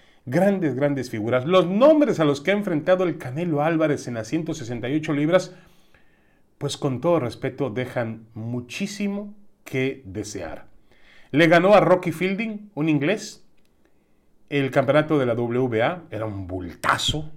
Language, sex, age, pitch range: Spanish, male, 40-59, 110-160 Hz